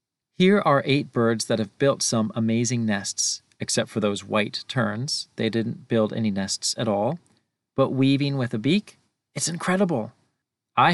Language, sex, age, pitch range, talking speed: English, male, 40-59, 110-140 Hz, 165 wpm